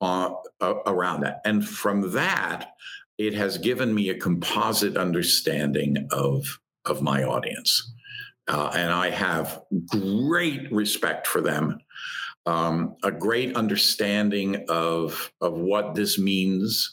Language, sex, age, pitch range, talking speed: English, male, 50-69, 100-155 Hz, 125 wpm